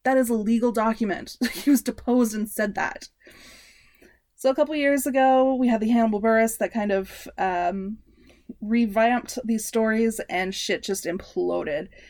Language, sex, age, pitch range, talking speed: English, female, 20-39, 190-240 Hz, 160 wpm